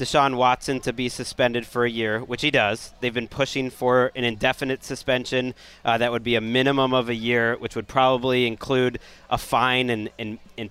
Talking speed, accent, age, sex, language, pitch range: 200 wpm, American, 30-49, male, English, 125-165 Hz